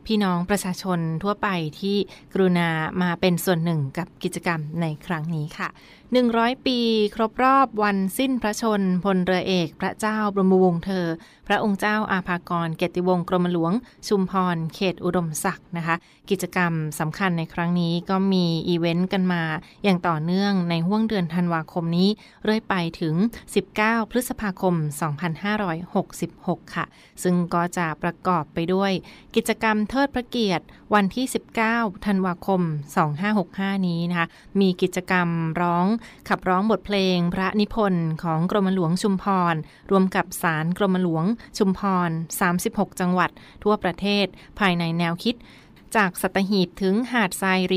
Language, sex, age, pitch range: Thai, female, 20-39, 170-205 Hz